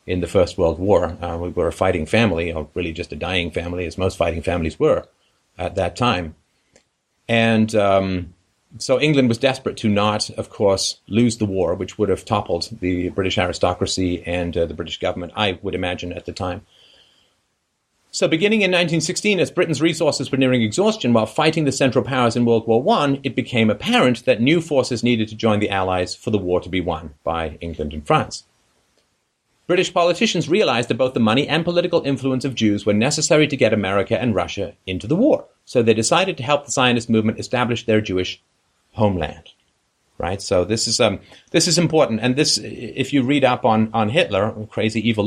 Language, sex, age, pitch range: English, male, 40-59, 90-125 Hz